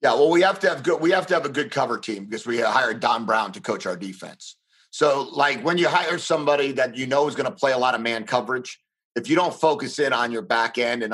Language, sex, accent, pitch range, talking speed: English, male, American, 115-145 Hz, 285 wpm